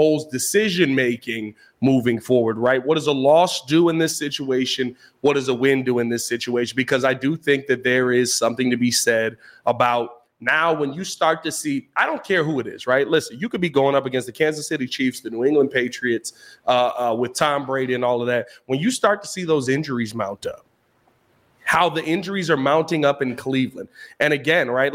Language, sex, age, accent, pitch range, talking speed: English, male, 30-49, American, 125-155 Hz, 215 wpm